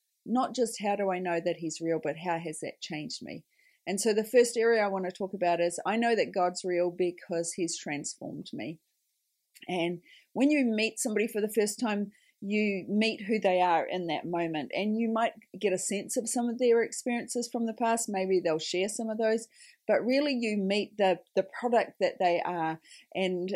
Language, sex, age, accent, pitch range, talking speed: English, female, 30-49, Australian, 170-220 Hz, 210 wpm